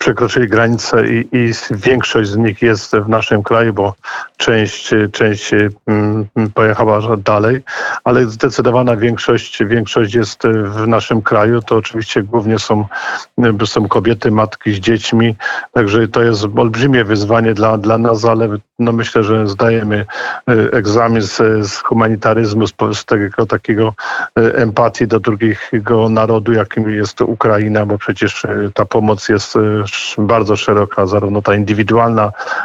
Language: Polish